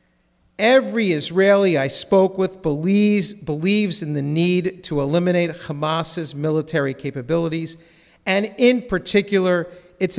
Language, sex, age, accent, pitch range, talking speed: English, male, 50-69, American, 150-190 Hz, 110 wpm